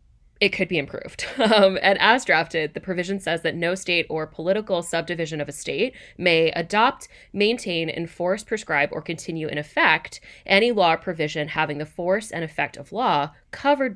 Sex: female